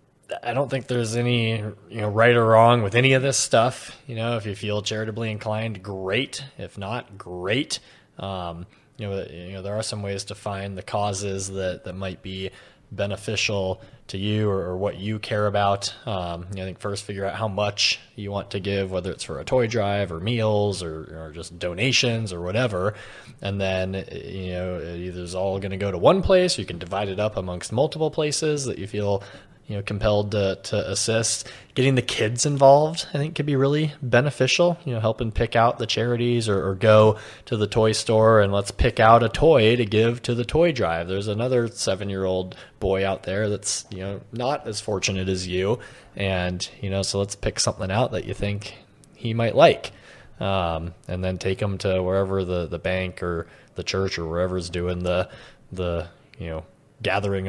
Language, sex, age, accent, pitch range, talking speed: English, male, 20-39, American, 95-115 Hz, 205 wpm